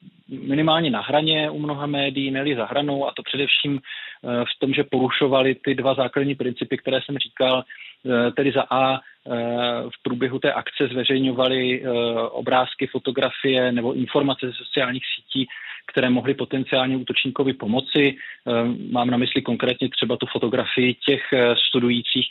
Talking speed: 140 wpm